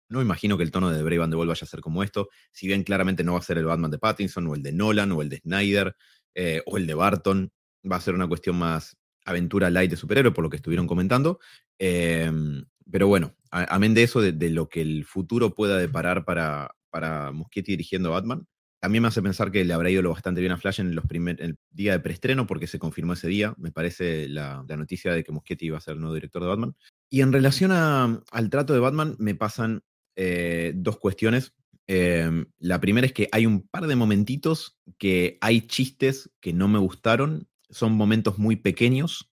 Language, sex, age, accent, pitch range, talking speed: Spanish, male, 30-49, Argentinian, 85-115 Hz, 230 wpm